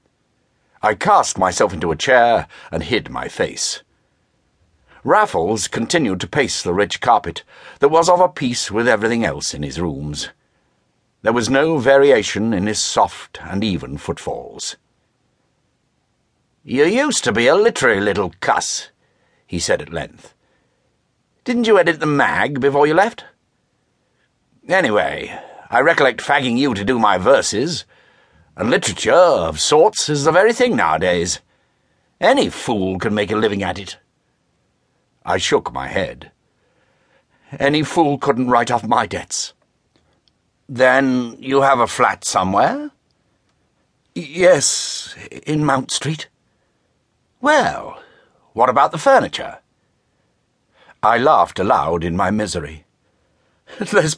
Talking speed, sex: 130 wpm, male